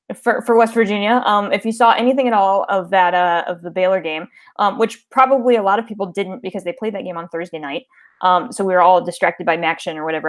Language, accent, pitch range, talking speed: English, American, 190-255 Hz, 255 wpm